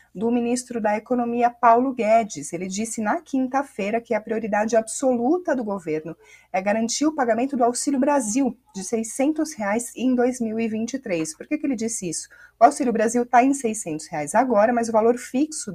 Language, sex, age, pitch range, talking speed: Portuguese, female, 30-49, 205-260 Hz, 180 wpm